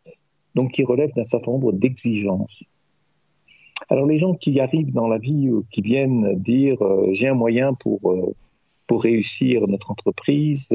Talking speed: 160 wpm